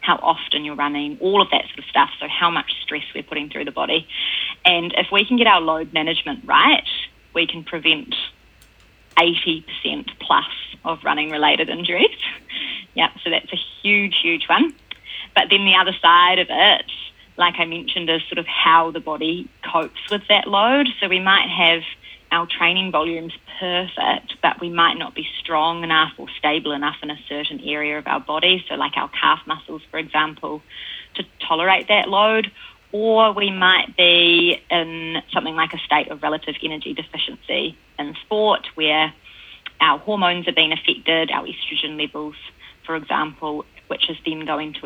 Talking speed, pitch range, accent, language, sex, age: 175 wpm, 155-185 Hz, Australian, English, female, 20-39